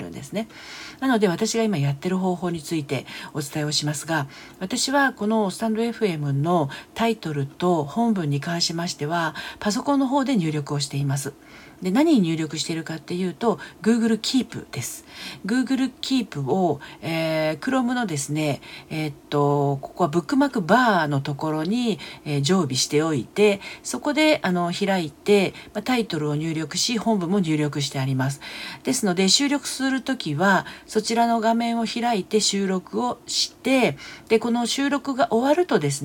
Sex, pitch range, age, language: female, 150-230 Hz, 50-69, Japanese